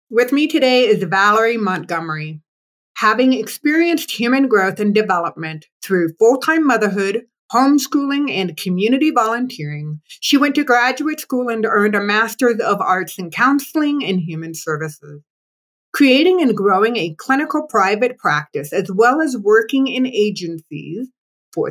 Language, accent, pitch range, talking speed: English, American, 180-270 Hz, 135 wpm